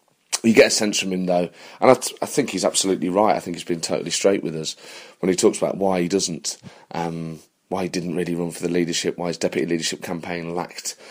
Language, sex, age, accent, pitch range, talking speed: English, male, 30-49, British, 90-110 Hz, 245 wpm